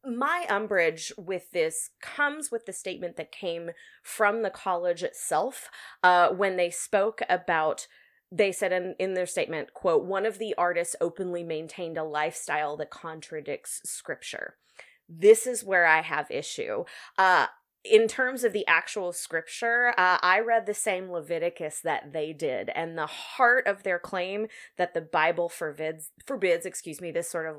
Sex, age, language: female, 20-39, English